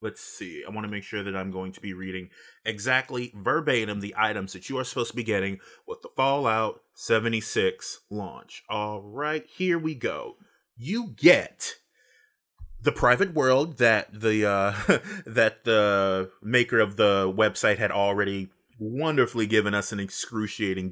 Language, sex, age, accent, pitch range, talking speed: English, male, 30-49, American, 105-150 Hz, 160 wpm